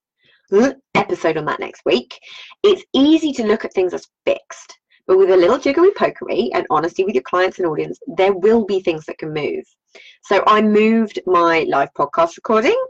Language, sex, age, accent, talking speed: English, female, 20-39, British, 185 wpm